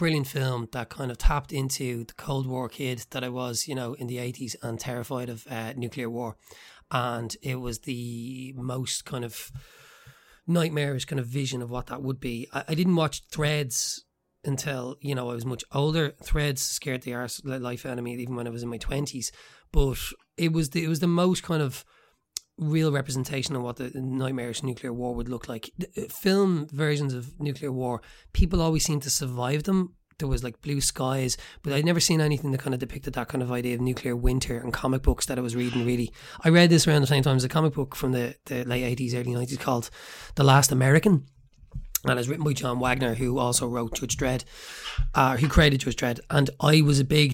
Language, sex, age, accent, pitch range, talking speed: English, male, 30-49, Irish, 125-145 Hz, 220 wpm